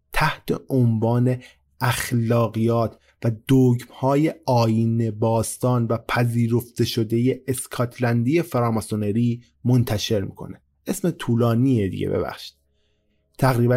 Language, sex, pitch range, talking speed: Persian, male, 110-135 Hz, 85 wpm